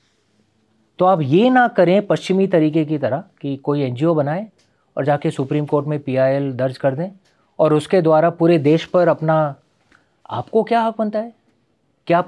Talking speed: 175 wpm